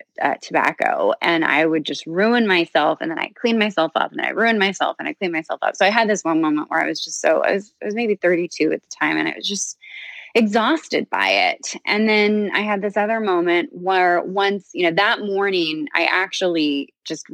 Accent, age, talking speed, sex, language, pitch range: American, 20-39, 230 wpm, female, English, 170-215 Hz